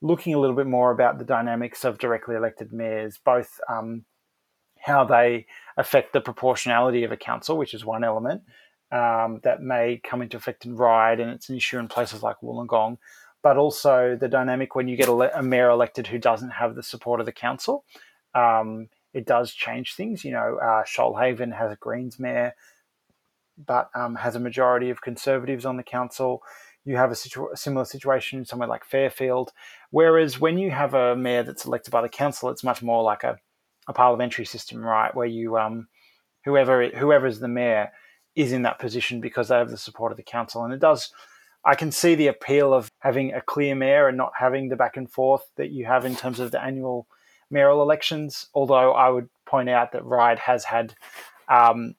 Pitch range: 120-130 Hz